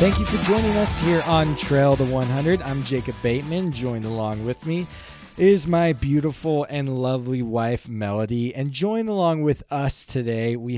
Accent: American